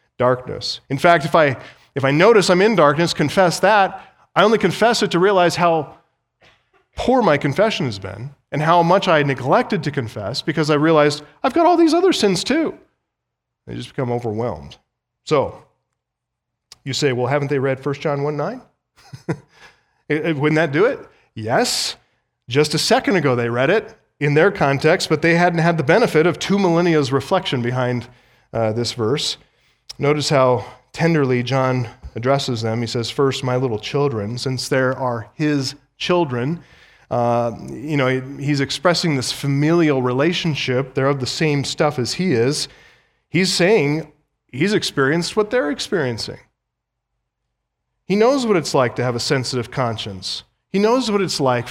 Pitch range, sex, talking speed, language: 125-170 Hz, male, 165 wpm, English